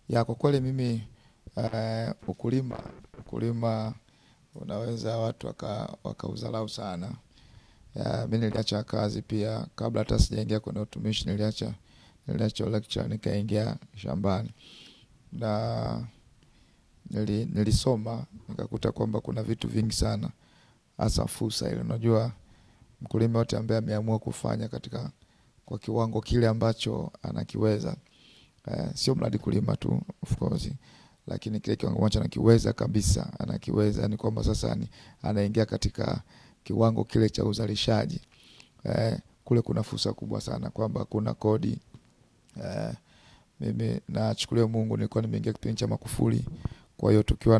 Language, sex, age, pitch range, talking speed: Swahili, male, 50-69, 105-115 Hz, 120 wpm